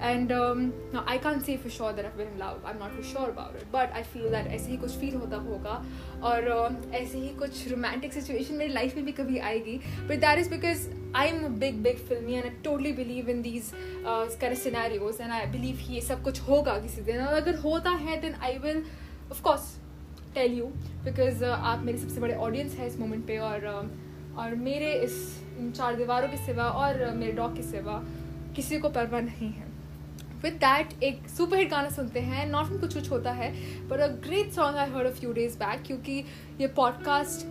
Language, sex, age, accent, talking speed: Hindi, female, 10-29, native, 205 wpm